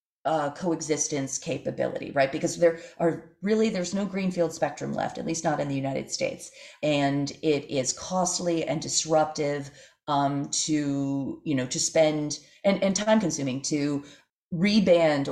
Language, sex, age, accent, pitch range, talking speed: English, female, 30-49, American, 140-170 Hz, 150 wpm